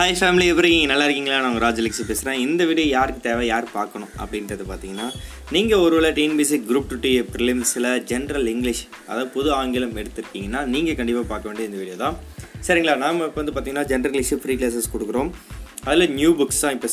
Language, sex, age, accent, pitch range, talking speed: Tamil, male, 20-39, native, 115-155 Hz, 180 wpm